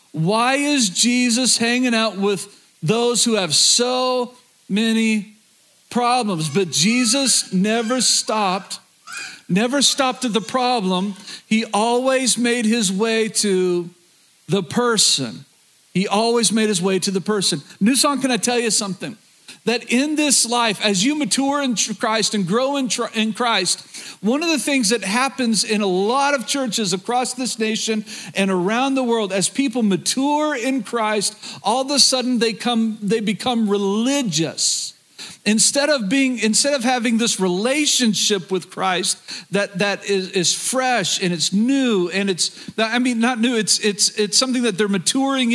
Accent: American